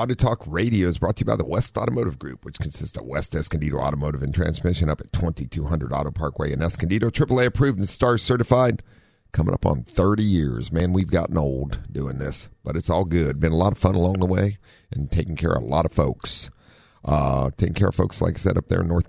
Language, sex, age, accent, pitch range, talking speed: English, male, 50-69, American, 80-100 Hz, 235 wpm